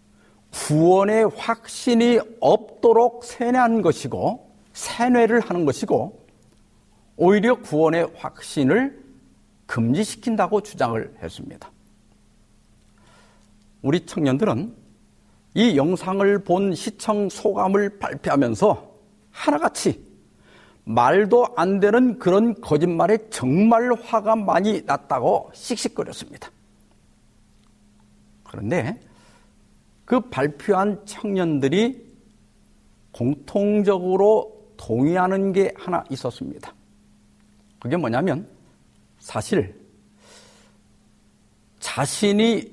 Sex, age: male, 50-69